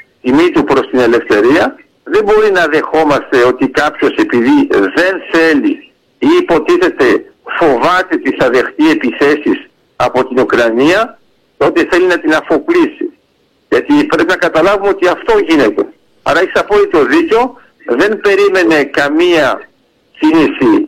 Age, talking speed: 60-79, 125 wpm